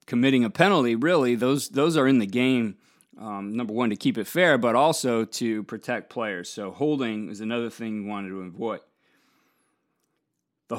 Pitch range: 115-140 Hz